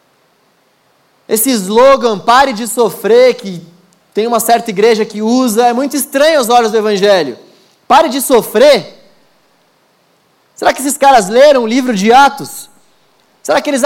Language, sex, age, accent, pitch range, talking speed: Portuguese, male, 20-39, Brazilian, 225-265 Hz, 145 wpm